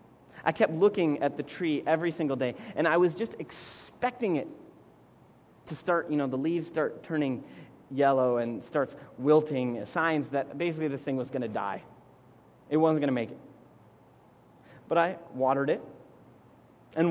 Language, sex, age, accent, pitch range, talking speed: English, male, 30-49, American, 140-185 Hz, 165 wpm